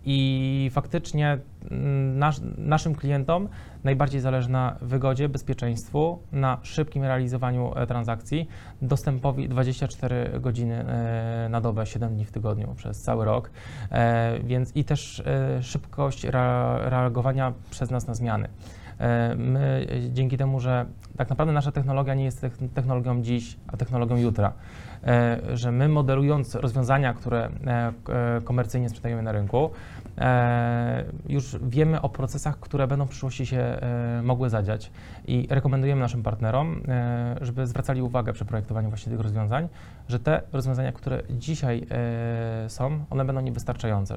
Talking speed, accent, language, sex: 125 wpm, native, Polish, male